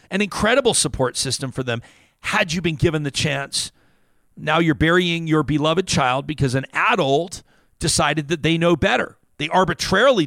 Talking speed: 165 wpm